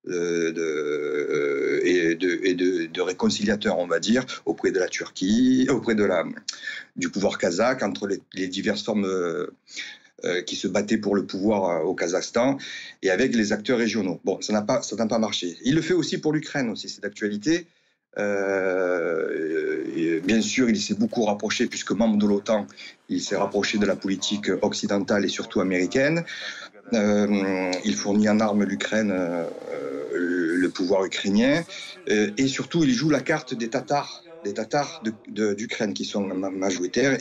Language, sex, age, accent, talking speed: French, male, 50-69, French, 175 wpm